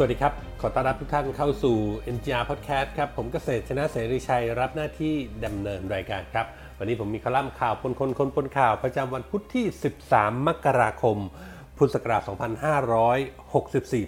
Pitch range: 120-155 Hz